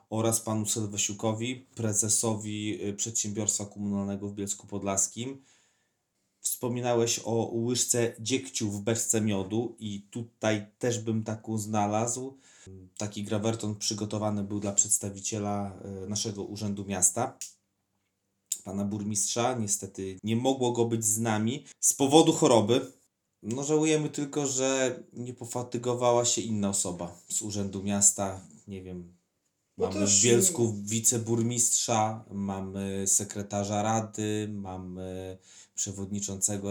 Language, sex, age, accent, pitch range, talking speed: Polish, male, 30-49, native, 100-125 Hz, 110 wpm